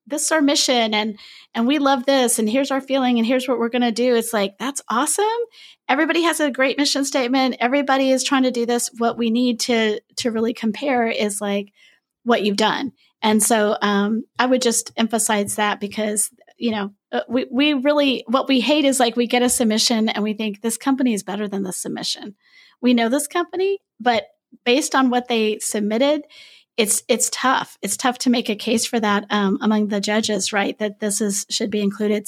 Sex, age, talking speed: female, 30-49, 210 wpm